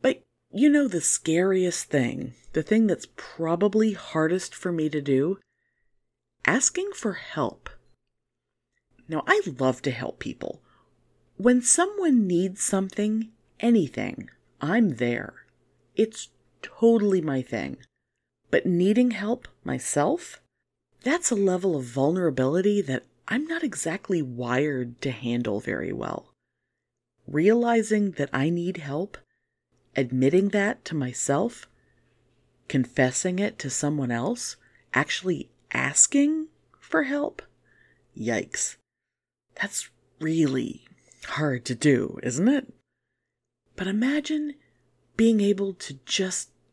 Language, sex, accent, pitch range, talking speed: English, female, American, 140-230 Hz, 110 wpm